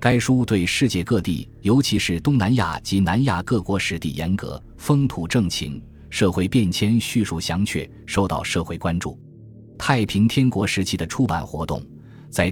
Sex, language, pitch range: male, Chinese, 85-115 Hz